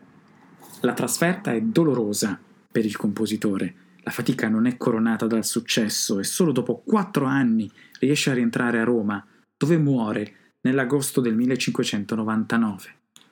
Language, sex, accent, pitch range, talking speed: Italian, male, native, 110-140 Hz, 130 wpm